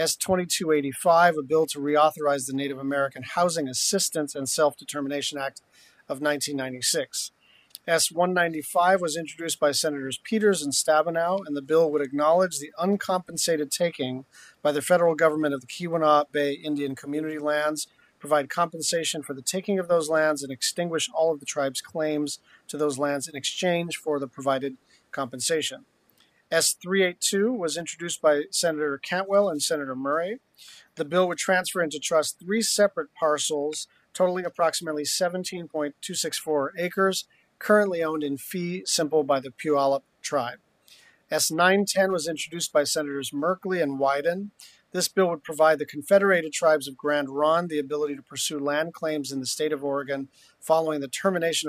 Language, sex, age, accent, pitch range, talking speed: English, male, 40-59, American, 140-170 Hz, 150 wpm